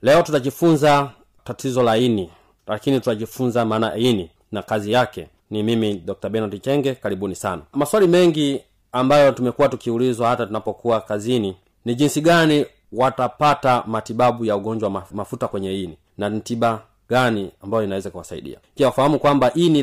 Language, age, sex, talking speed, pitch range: Swahili, 40-59, male, 140 wpm, 110-150 Hz